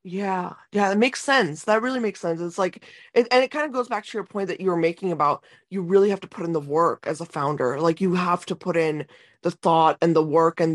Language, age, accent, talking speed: English, 20-39, American, 270 wpm